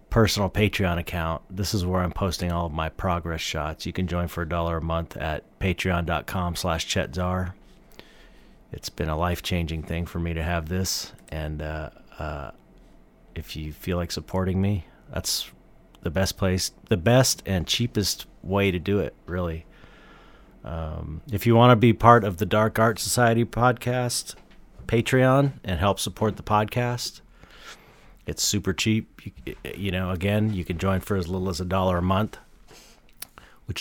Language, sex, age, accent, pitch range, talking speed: English, male, 40-59, American, 85-105 Hz, 165 wpm